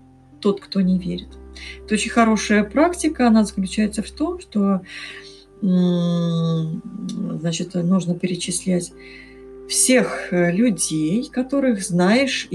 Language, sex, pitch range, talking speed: Russian, female, 180-215 Hz, 95 wpm